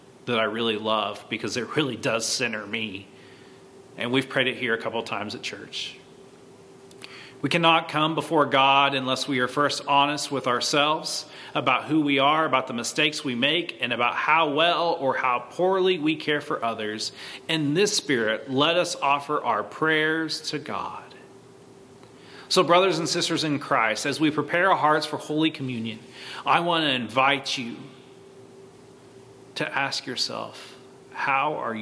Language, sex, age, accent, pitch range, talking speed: English, male, 30-49, American, 120-150 Hz, 160 wpm